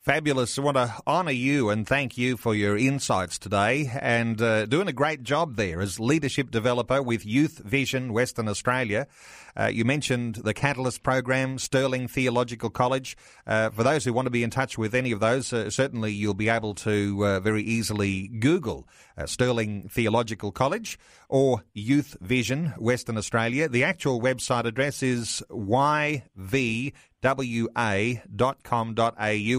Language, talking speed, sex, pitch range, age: English, 155 wpm, male, 110-130 Hz, 30-49